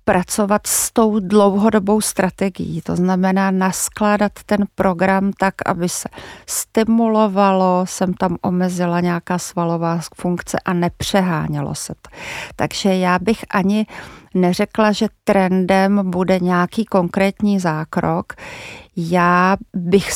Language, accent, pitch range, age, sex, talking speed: Czech, native, 180-205 Hz, 40-59, female, 110 wpm